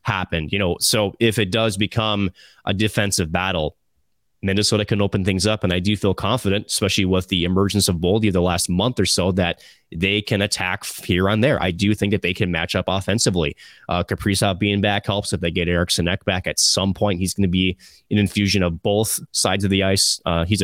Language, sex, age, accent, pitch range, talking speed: English, male, 20-39, American, 95-105 Hz, 220 wpm